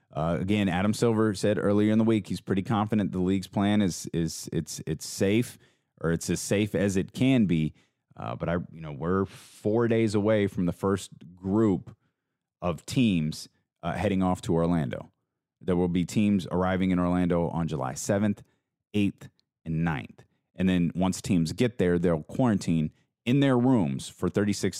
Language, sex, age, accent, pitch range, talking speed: English, male, 30-49, American, 85-110 Hz, 180 wpm